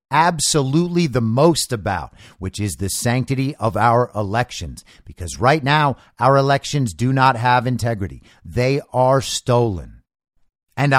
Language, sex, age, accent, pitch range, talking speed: English, male, 50-69, American, 125-175 Hz, 130 wpm